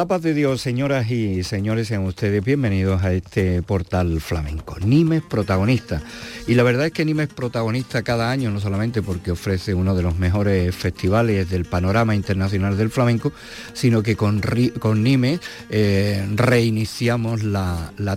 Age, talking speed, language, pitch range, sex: 50-69, 165 wpm, Spanish, 100-115 Hz, male